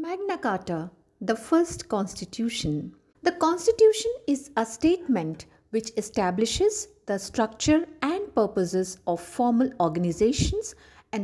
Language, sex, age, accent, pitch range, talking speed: English, female, 50-69, Indian, 185-260 Hz, 105 wpm